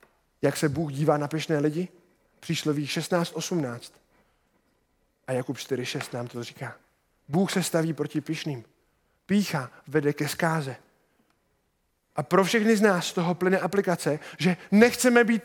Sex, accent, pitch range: male, native, 155-220 Hz